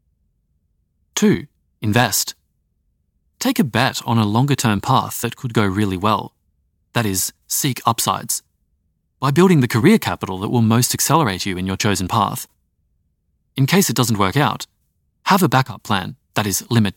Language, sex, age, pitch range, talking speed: English, male, 30-49, 90-125 Hz, 160 wpm